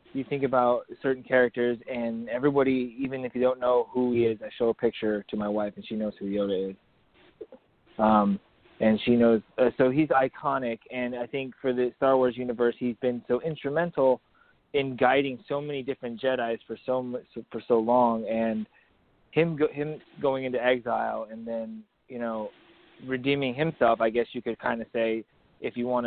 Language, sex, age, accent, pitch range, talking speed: English, male, 20-39, American, 115-135 Hz, 190 wpm